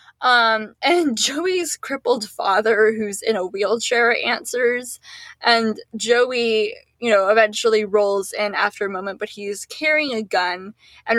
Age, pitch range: 10-29, 210-255 Hz